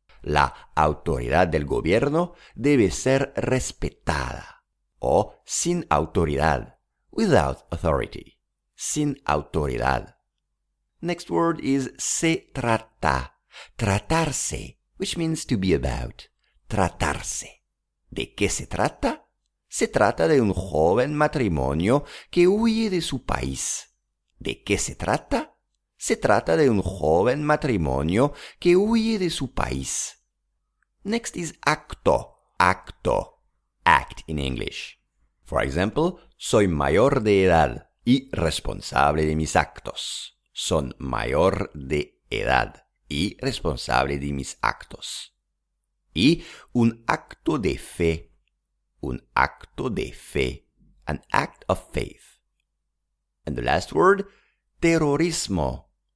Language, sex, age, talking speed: English, male, 50-69, 110 wpm